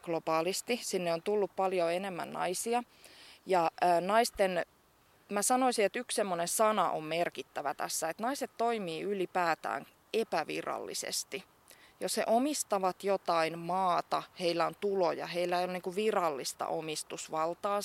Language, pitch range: Finnish, 165-205 Hz